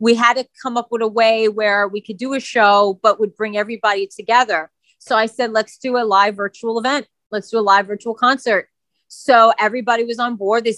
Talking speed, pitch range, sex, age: 225 wpm, 215-255 Hz, female, 30-49